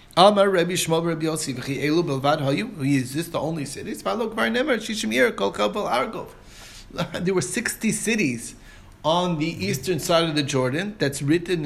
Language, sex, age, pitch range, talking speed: English, male, 30-49, 135-185 Hz, 95 wpm